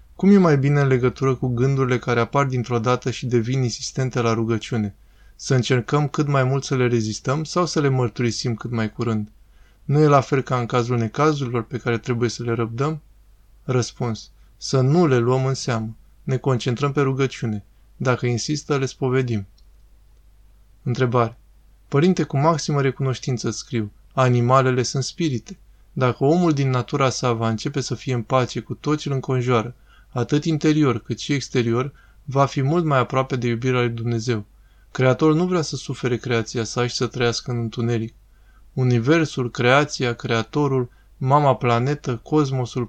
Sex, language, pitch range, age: male, Romanian, 115-140 Hz, 20-39